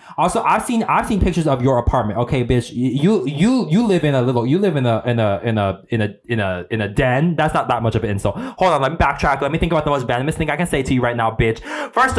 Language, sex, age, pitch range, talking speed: English, male, 20-39, 135-180 Hz, 305 wpm